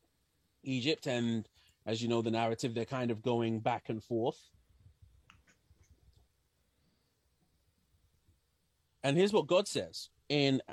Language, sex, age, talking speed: English, male, 30-49, 110 wpm